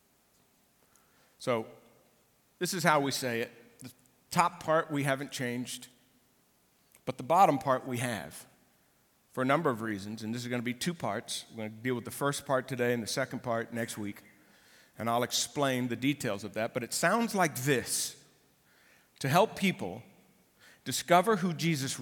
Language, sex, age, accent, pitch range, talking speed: English, male, 50-69, American, 120-175 Hz, 175 wpm